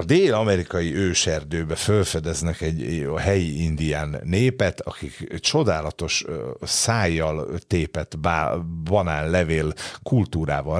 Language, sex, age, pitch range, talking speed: Hungarian, male, 50-69, 80-100 Hz, 85 wpm